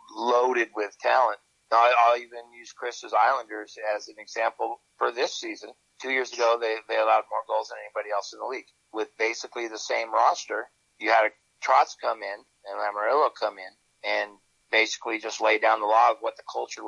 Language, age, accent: English, 50-69, American